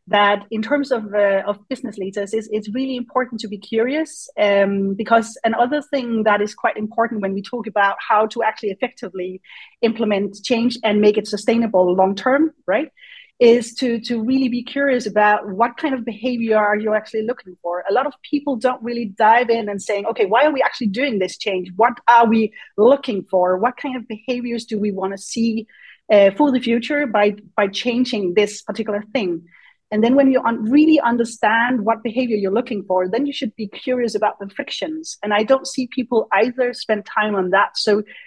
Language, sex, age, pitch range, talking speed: English, female, 30-49, 210-260 Hz, 200 wpm